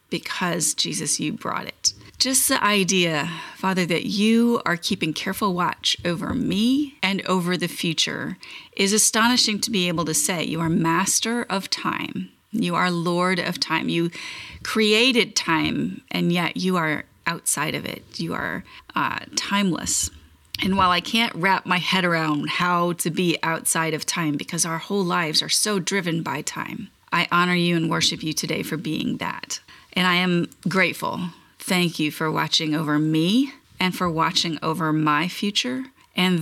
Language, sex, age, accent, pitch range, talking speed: English, female, 30-49, American, 165-195 Hz, 170 wpm